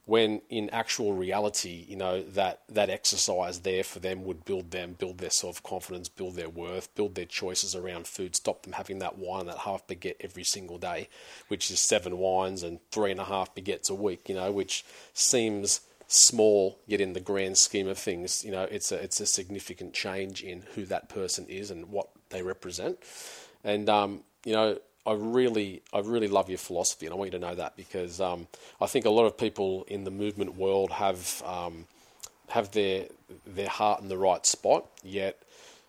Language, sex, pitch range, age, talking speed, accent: English, male, 90-105 Hz, 40-59, 200 wpm, Australian